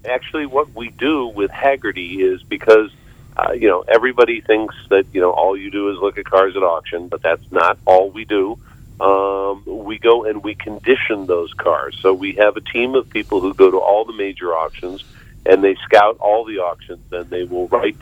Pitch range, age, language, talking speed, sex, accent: 90-115 Hz, 50-69, English, 210 wpm, male, American